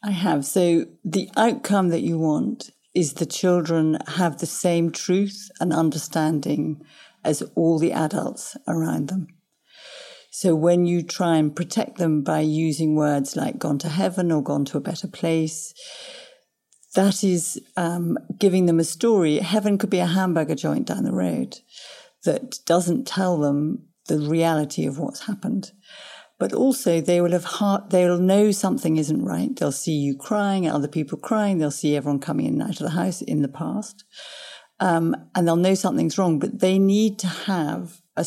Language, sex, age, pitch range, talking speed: English, female, 50-69, 155-200 Hz, 175 wpm